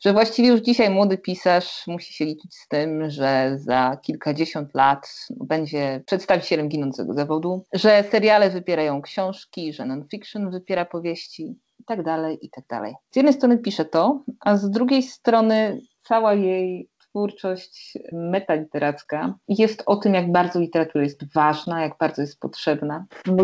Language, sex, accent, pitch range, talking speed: Polish, female, native, 175-235 Hz, 140 wpm